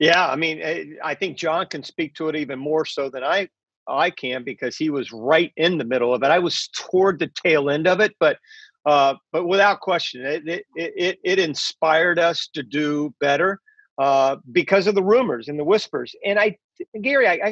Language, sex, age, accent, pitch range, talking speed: English, male, 50-69, American, 145-195 Hz, 205 wpm